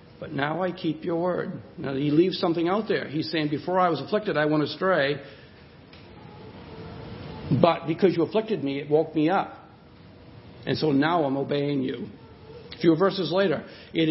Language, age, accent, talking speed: English, 60-79, American, 175 wpm